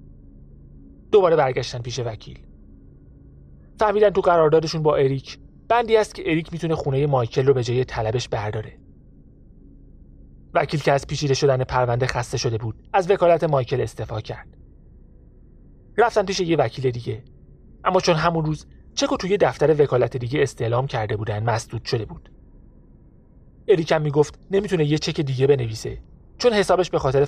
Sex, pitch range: male, 110-155 Hz